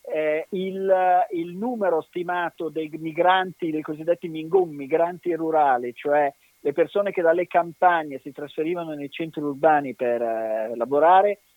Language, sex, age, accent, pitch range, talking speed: Italian, male, 40-59, native, 135-185 Hz, 135 wpm